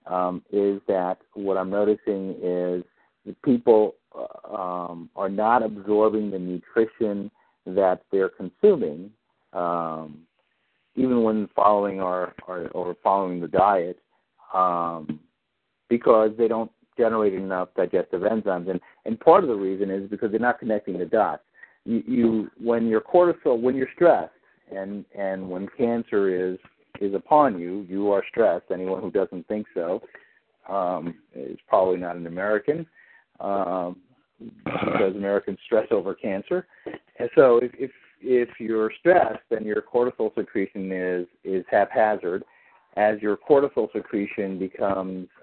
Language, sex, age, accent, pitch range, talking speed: English, male, 50-69, American, 90-110 Hz, 140 wpm